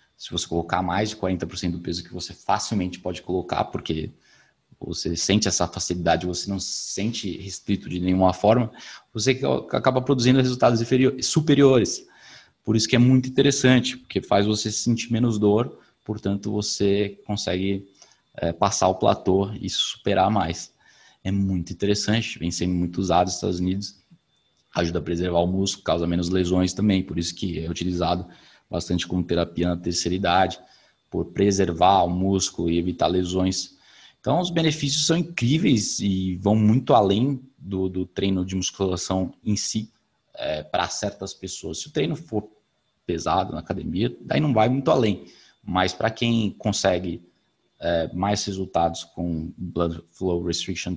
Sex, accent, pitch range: male, Brazilian, 90-110 Hz